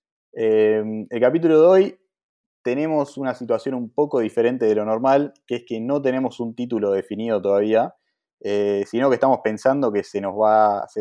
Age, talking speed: 20-39, 165 wpm